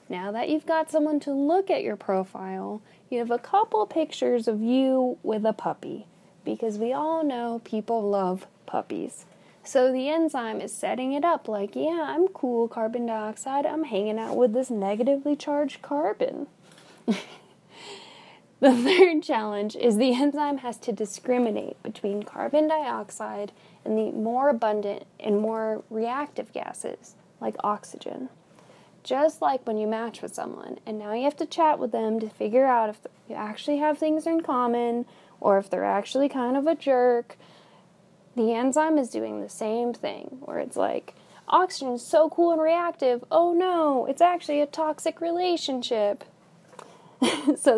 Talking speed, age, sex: 160 wpm, 10-29, female